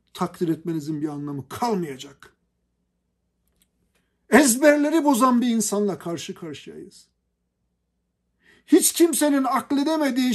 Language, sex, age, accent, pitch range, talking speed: Turkish, male, 50-69, native, 150-230 Hz, 80 wpm